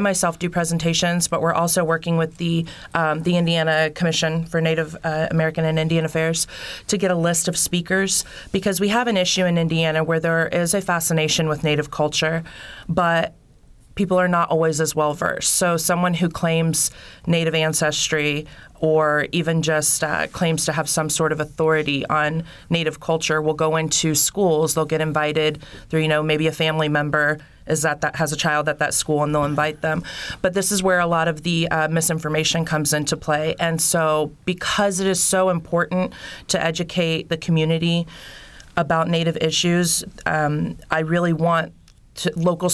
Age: 30-49